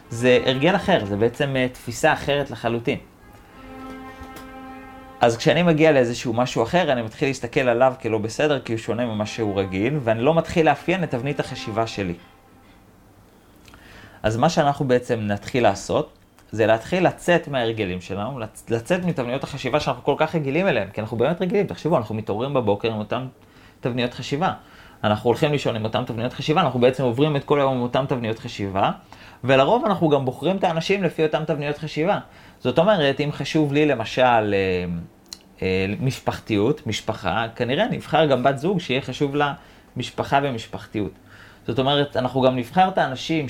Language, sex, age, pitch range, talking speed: Hebrew, male, 30-49, 105-145 Hz, 160 wpm